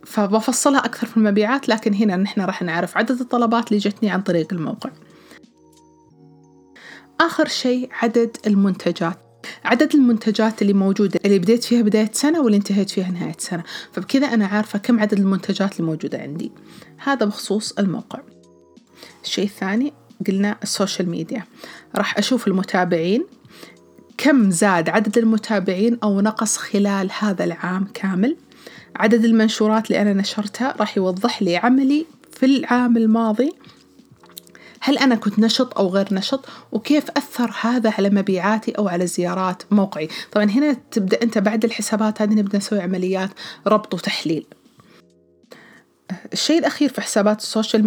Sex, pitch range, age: female, 195-235 Hz, 30-49